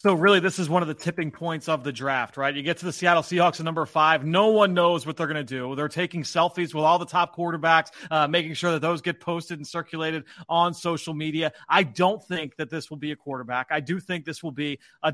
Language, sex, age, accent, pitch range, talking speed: English, male, 30-49, American, 155-190 Hz, 260 wpm